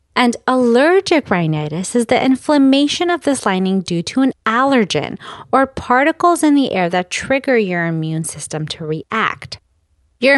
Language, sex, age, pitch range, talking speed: English, female, 30-49, 175-275 Hz, 150 wpm